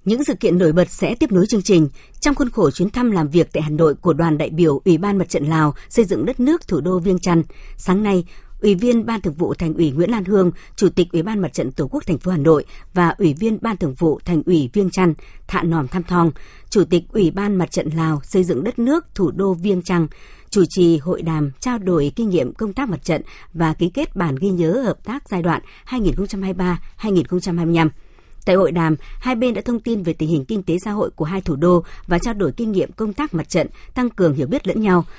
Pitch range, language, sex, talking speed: 165-210 Hz, Vietnamese, male, 250 wpm